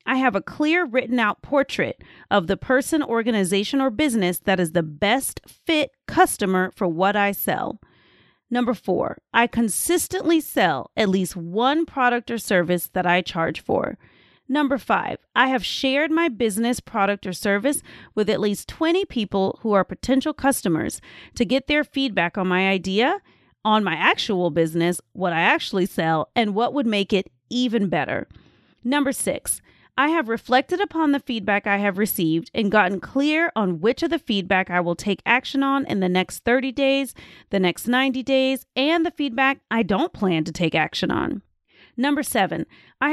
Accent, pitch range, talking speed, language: American, 190-275 Hz, 175 wpm, English